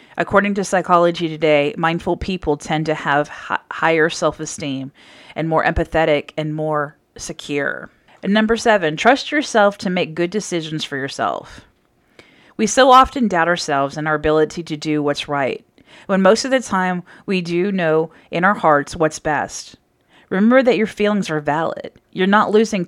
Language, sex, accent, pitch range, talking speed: English, female, American, 155-195 Hz, 165 wpm